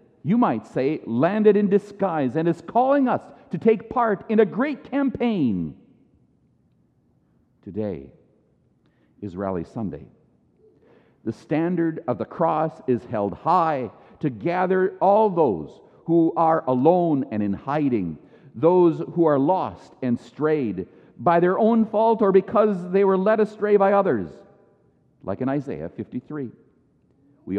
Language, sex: English, male